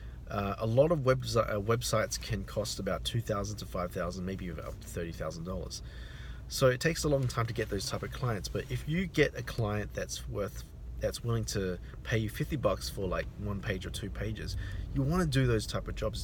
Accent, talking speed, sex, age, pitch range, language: Australian, 215 wpm, male, 30-49, 90-125 Hz, English